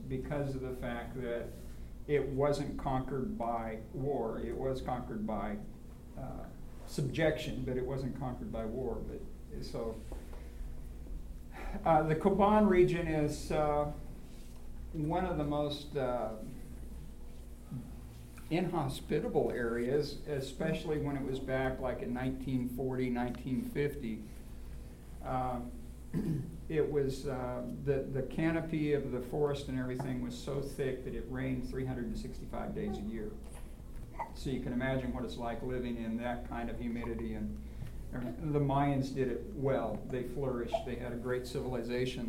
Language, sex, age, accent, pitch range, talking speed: English, male, 50-69, American, 120-140 Hz, 135 wpm